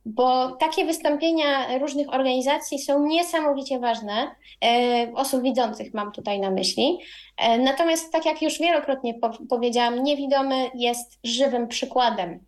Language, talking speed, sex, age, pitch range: Polish, 115 wpm, female, 20-39, 220-275 Hz